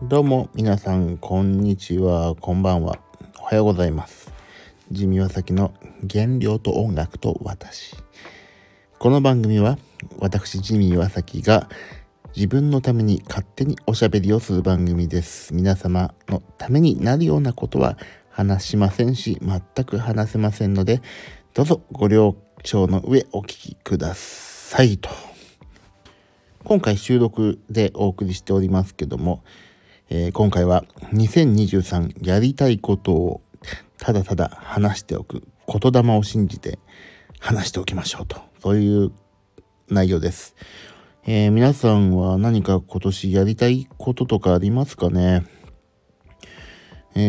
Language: Japanese